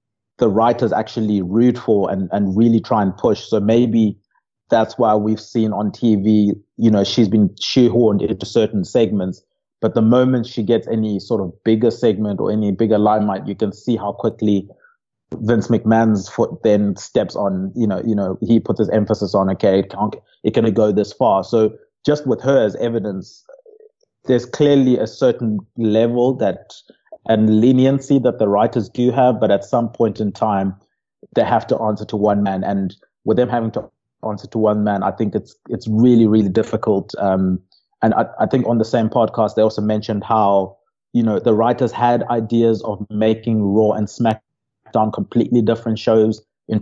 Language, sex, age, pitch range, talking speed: English, male, 30-49, 105-115 Hz, 185 wpm